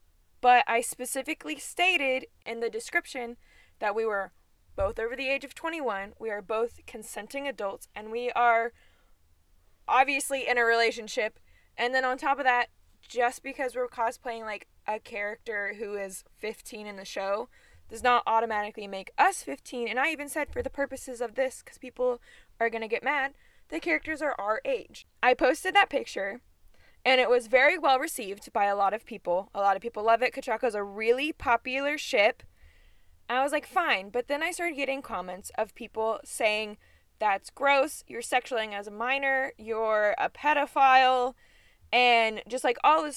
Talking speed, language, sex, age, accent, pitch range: 180 wpm, English, female, 20-39, American, 210-270 Hz